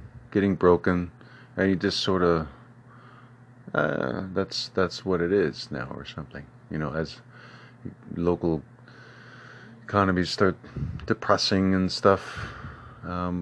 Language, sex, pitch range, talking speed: English, male, 85-120 Hz, 110 wpm